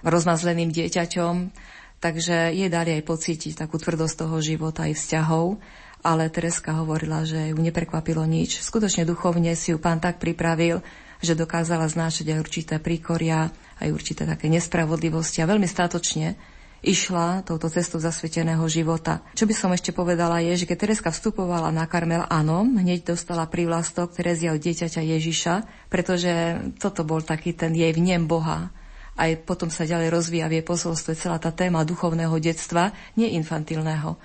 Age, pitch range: 30-49, 160-175 Hz